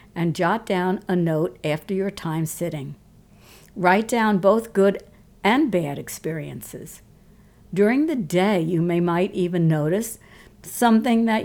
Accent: American